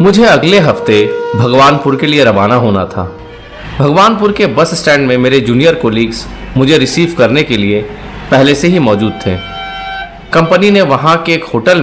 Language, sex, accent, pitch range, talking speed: Hindi, male, native, 120-180 Hz, 165 wpm